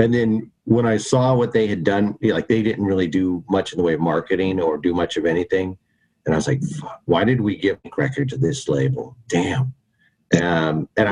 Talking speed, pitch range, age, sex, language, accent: 220 wpm, 90-120 Hz, 50-69, male, English, American